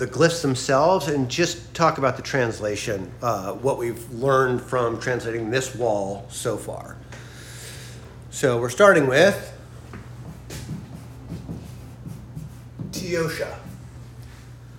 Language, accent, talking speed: English, American, 95 wpm